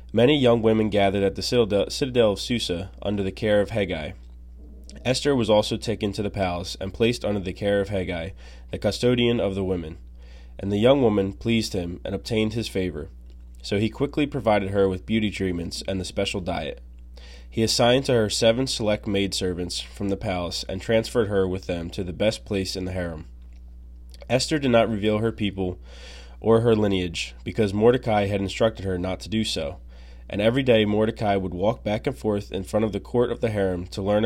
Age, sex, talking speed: 20-39, male, 200 wpm